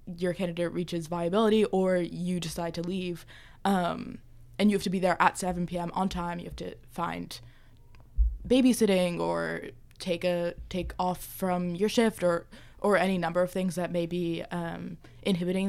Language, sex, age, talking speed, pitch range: English, female, 20-39, 175 wpm, 170-190 Hz